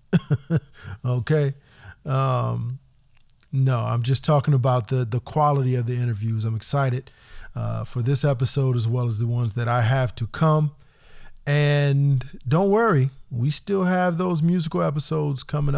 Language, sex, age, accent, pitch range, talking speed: English, male, 40-59, American, 125-155 Hz, 150 wpm